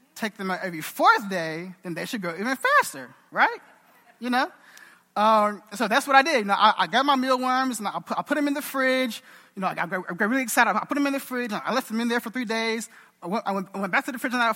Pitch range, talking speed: 145-230 Hz, 295 wpm